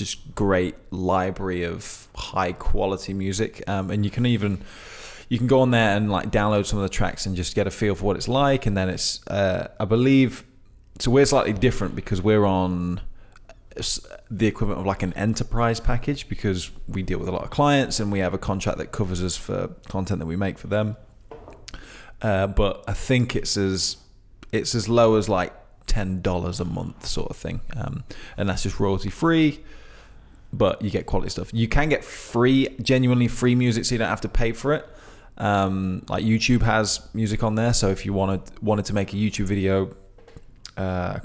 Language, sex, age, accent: English, male, 20-39, British